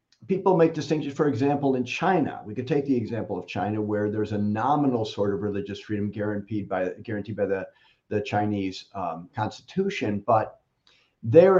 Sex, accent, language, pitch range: male, American, English, 105-125 Hz